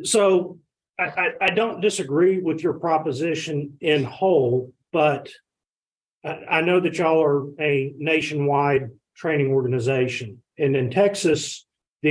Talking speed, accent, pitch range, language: 125 wpm, American, 130-160 Hz, English